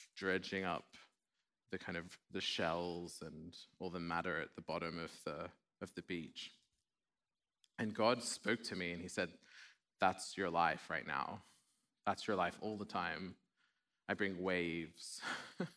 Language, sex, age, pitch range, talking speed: English, male, 20-39, 95-135 Hz, 155 wpm